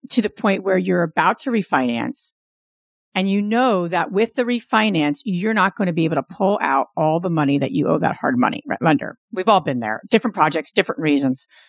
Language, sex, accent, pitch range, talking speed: English, female, American, 170-235 Hz, 215 wpm